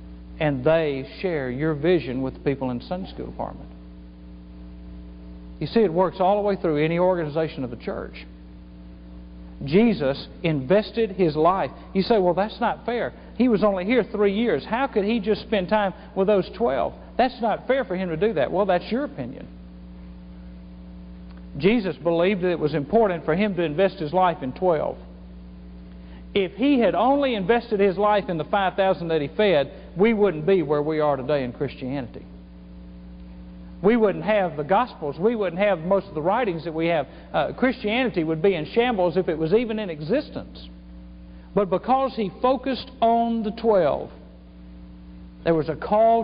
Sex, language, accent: male, English, American